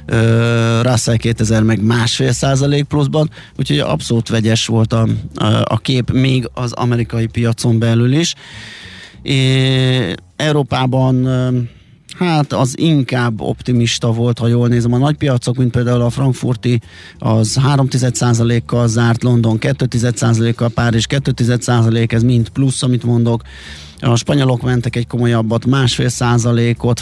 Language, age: Hungarian, 30-49